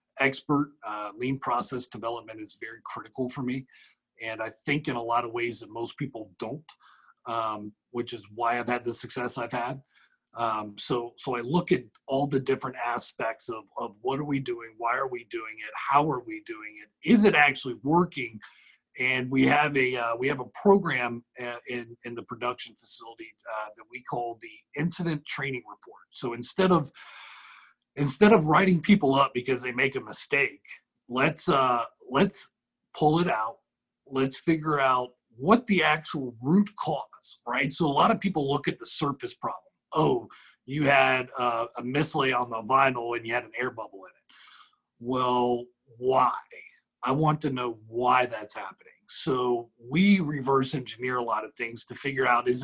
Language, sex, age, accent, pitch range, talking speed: English, male, 40-59, American, 120-145 Hz, 180 wpm